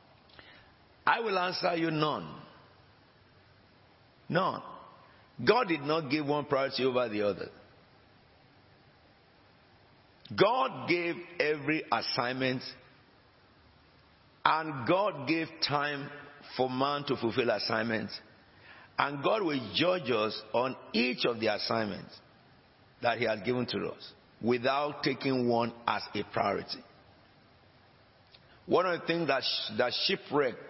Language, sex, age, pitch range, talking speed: English, male, 50-69, 125-155 Hz, 115 wpm